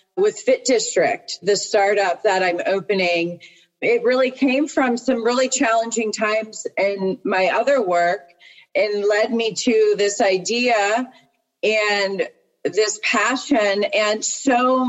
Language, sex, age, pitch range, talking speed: English, female, 40-59, 190-255 Hz, 125 wpm